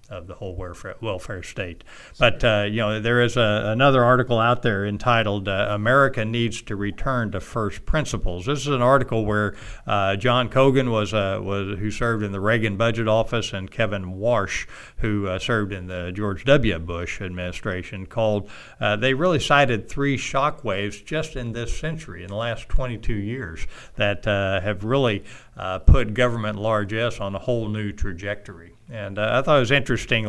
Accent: American